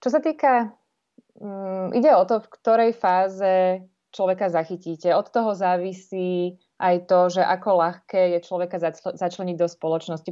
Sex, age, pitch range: female, 20-39, 180-200 Hz